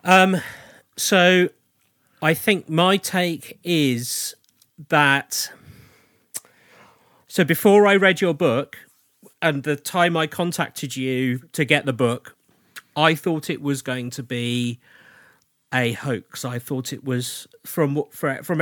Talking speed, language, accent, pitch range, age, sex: 125 wpm, English, British, 125-155 Hz, 40-59, male